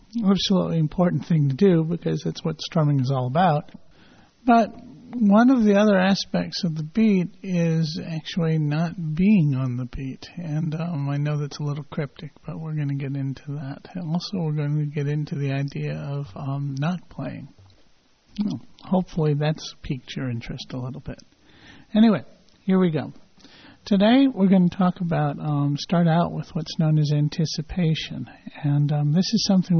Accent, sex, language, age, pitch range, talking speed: American, male, English, 50-69, 145-175 Hz, 180 wpm